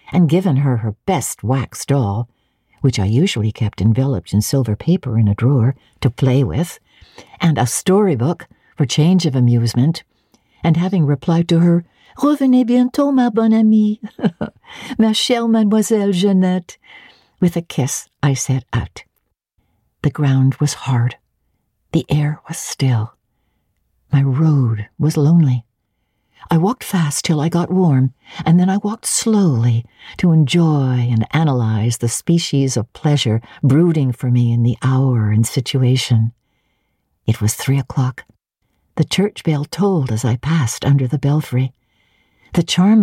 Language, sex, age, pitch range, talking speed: English, female, 60-79, 120-170 Hz, 145 wpm